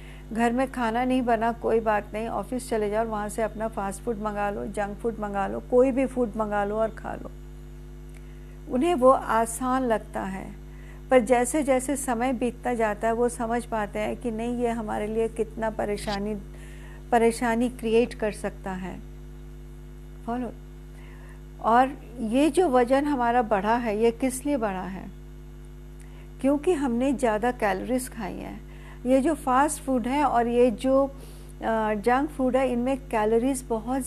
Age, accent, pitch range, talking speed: 50-69, native, 225-265 Hz, 160 wpm